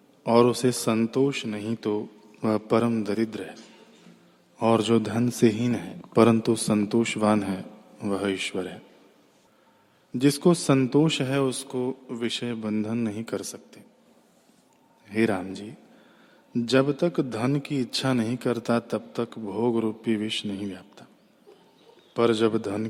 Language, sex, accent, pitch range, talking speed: Hindi, male, native, 105-130 Hz, 130 wpm